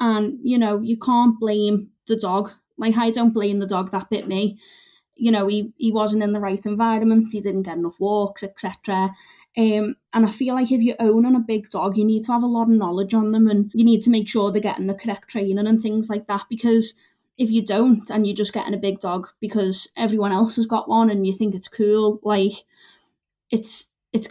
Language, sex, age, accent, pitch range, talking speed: English, female, 20-39, British, 195-225 Hz, 230 wpm